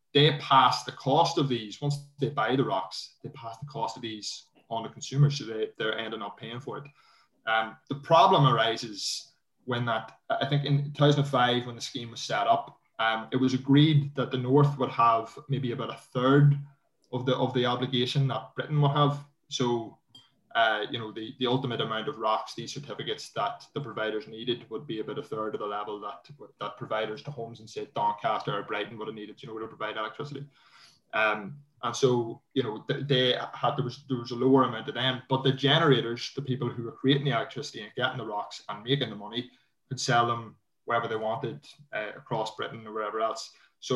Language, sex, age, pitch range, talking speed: English, male, 20-39, 115-140 Hz, 215 wpm